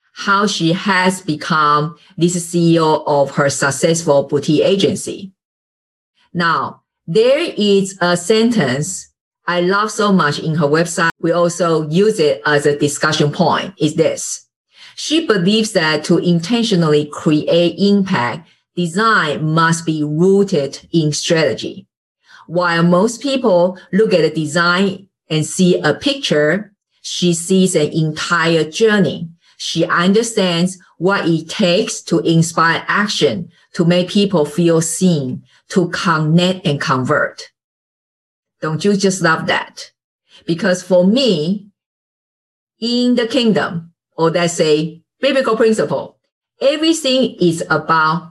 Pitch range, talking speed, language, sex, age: 160-205 Hz, 120 wpm, English, female, 50-69